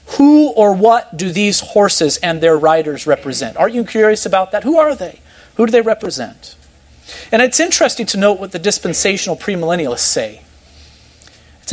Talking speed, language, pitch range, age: 170 wpm, English, 130-195 Hz, 40-59